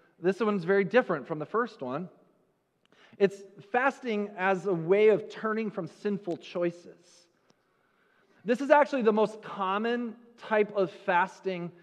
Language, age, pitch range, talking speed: English, 30-49, 185-235 Hz, 135 wpm